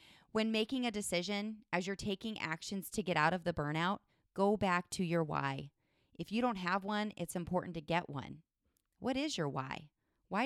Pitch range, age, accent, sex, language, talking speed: 155-195 Hz, 30-49, American, female, English, 195 wpm